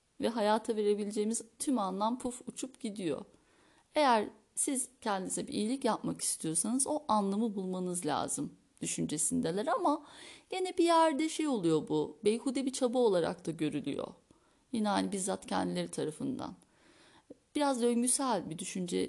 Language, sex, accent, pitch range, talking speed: Turkish, female, native, 200-270 Hz, 130 wpm